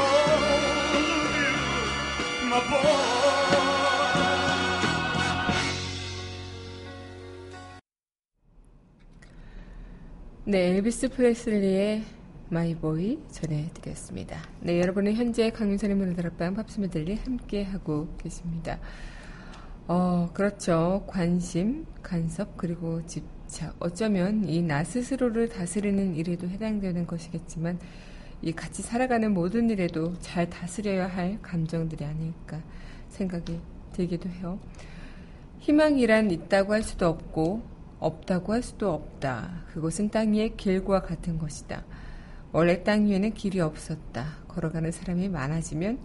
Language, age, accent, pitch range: Korean, 30-49, native, 165-210 Hz